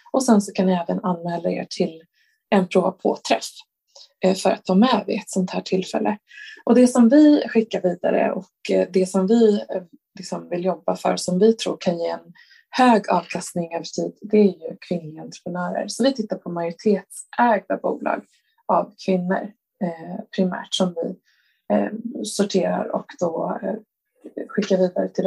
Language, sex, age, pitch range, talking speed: Swedish, female, 20-39, 185-225 Hz, 170 wpm